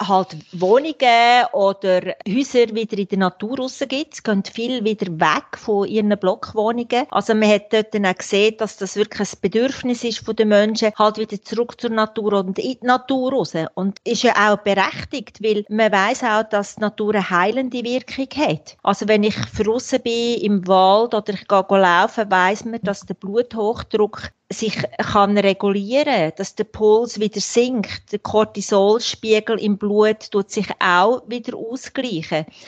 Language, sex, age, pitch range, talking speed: German, female, 40-59, 200-235 Hz, 170 wpm